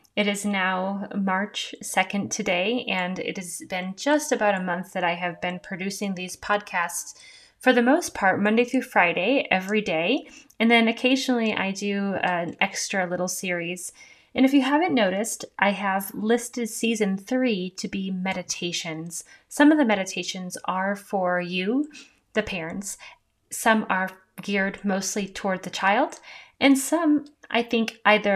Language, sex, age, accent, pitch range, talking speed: English, female, 30-49, American, 185-245 Hz, 155 wpm